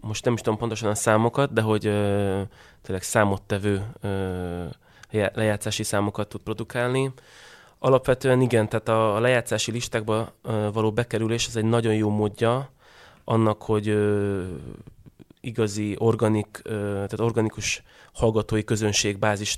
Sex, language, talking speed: male, Hungarian, 105 wpm